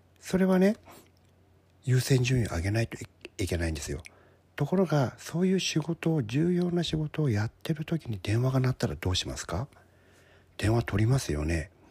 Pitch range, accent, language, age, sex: 90-135 Hz, native, Japanese, 60-79, male